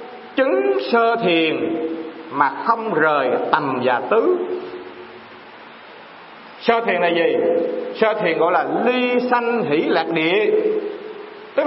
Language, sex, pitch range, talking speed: English, male, 180-295 Hz, 120 wpm